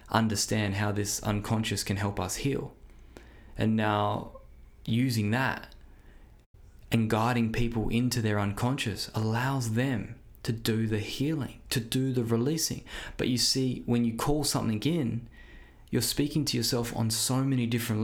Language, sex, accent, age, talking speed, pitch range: English, male, Australian, 20-39, 145 wpm, 110-125 Hz